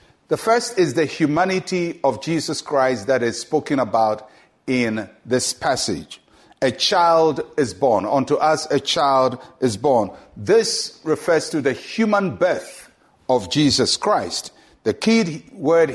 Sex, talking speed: male, 140 wpm